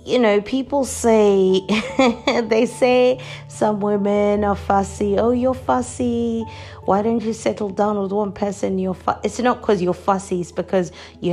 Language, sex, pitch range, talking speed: English, female, 155-205 Hz, 165 wpm